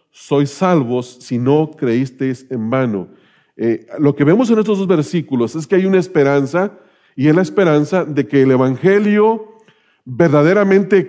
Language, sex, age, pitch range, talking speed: English, male, 40-59, 140-190 Hz, 155 wpm